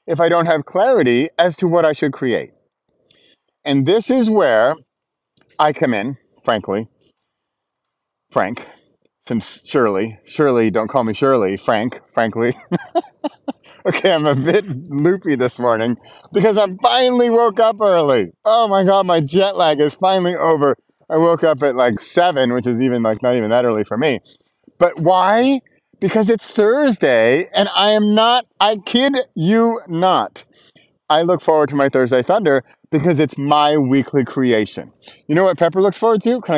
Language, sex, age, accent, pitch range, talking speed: English, male, 30-49, American, 135-210 Hz, 165 wpm